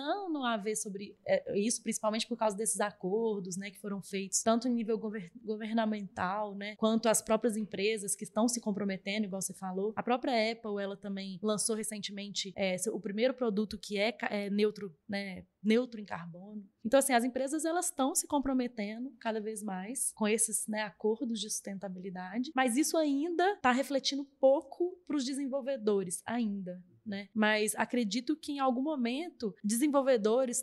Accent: Brazilian